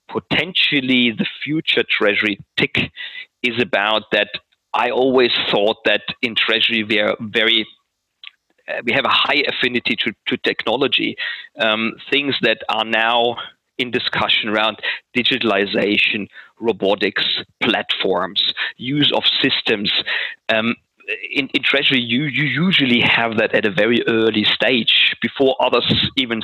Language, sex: English, male